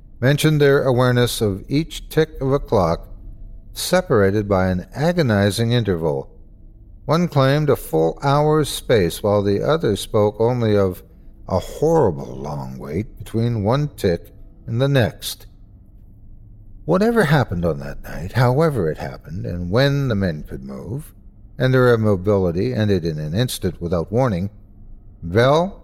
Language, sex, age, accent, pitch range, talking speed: English, male, 60-79, American, 95-125 Hz, 140 wpm